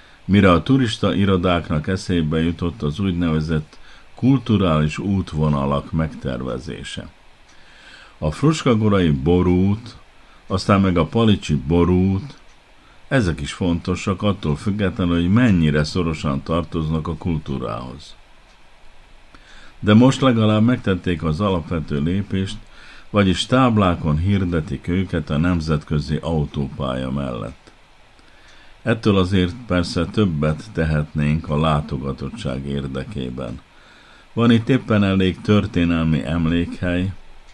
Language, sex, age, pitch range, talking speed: Hungarian, male, 50-69, 80-95 Hz, 95 wpm